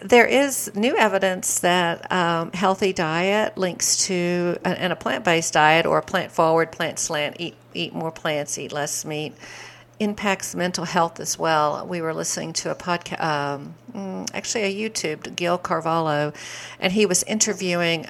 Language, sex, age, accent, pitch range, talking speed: English, female, 50-69, American, 160-190 Hz, 160 wpm